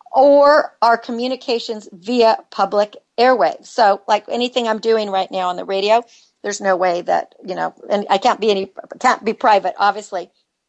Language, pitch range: English, 200-250 Hz